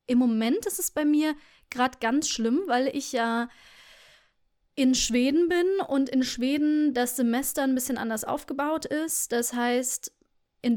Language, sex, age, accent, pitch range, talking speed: German, female, 20-39, German, 230-290 Hz, 155 wpm